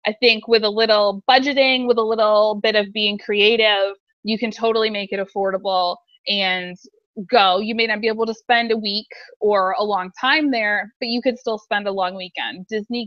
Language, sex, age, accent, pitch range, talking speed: English, female, 20-39, American, 195-235 Hz, 200 wpm